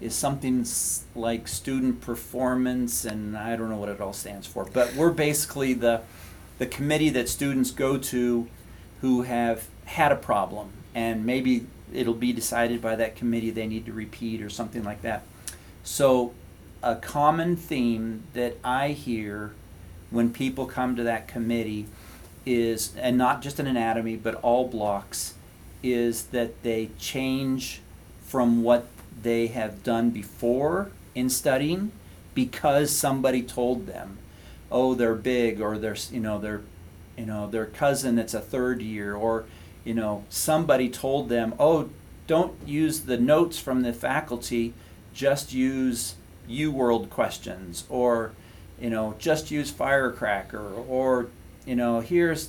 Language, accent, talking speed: English, American, 145 wpm